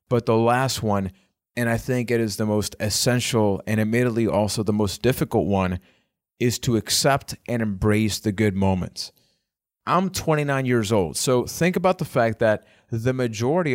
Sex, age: male, 30-49